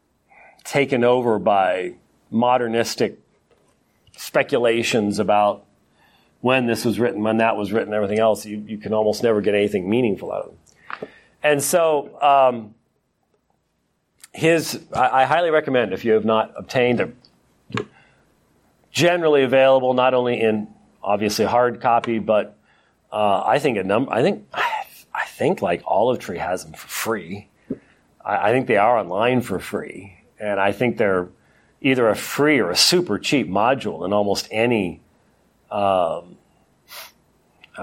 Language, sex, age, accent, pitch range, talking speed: English, male, 40-59, American, 105-125 Hz, 145 wpm